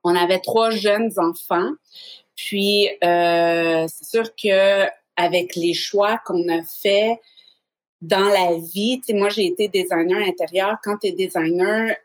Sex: female